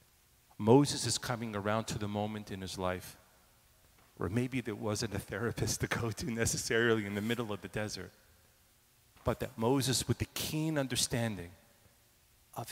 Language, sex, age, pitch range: English, male, 40-59, 105-140 Hz